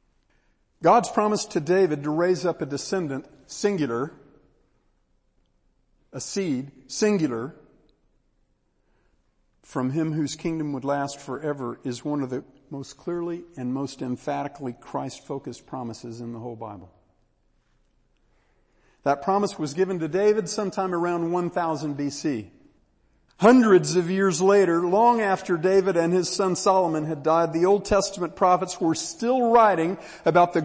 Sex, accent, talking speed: male, American, 130 wpm